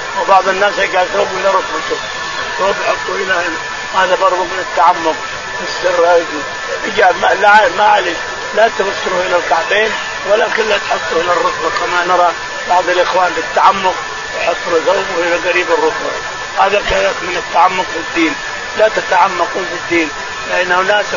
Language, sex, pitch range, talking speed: Arabic, male, 170-190 Hz, 140 wpm